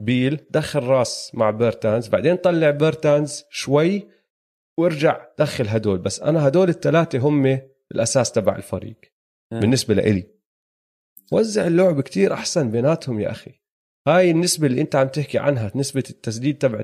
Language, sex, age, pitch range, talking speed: Arabic, male, 30-49, 115-165 Hz, 140 wpm